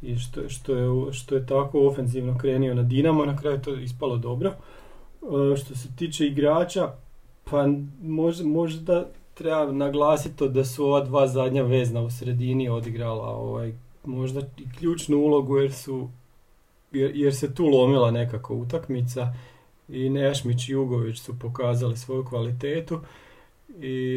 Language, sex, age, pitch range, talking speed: Croatian, male, 40-59, 125-140 Hz, 145 wpm